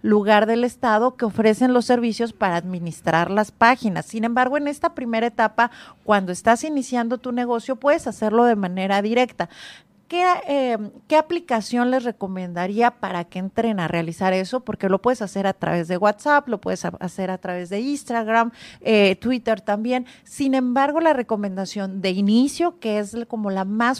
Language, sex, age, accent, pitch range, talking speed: Spanish, female, 40-59, Mexican, 210-255 Hz, 170 wpm